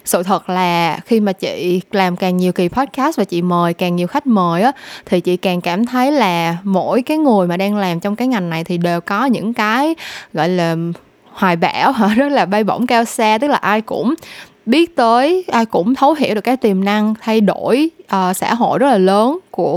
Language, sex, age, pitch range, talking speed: Vietnamese, female, 10-29, 185-250 Hz, 225 wpm